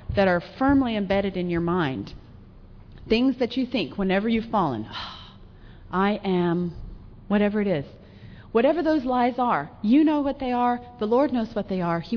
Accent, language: American, English